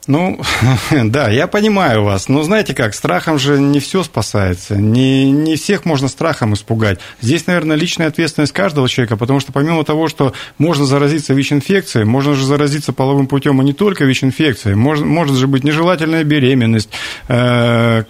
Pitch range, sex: 115-150 Hz, male